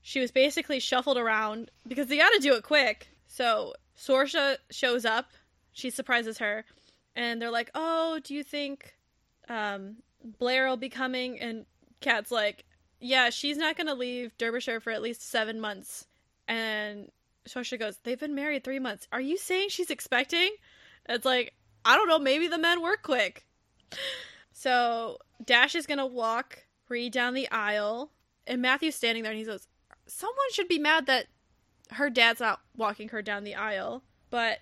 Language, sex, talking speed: English, female, 175 wpm